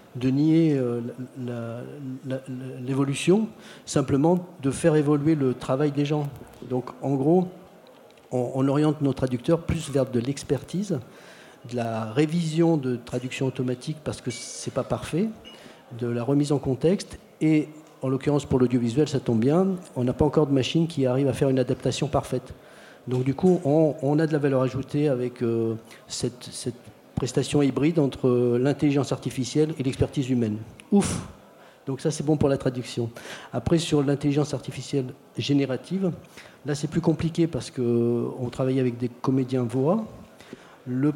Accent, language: French, French